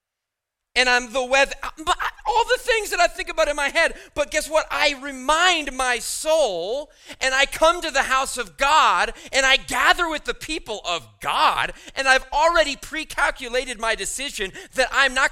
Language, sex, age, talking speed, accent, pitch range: English, male, 40-59, 180 wpm, American, 205-275 Hz